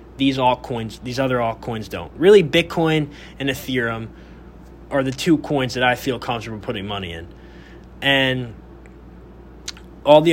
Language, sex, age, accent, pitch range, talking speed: English, male, 20-39, American, 115-145 Hz, 140 wpm